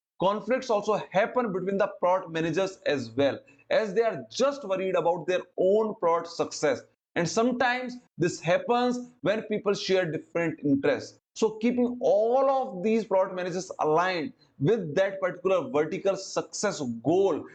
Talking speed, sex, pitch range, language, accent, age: 145 wpm, male, 160-220 Hz, English, Indian, 30-49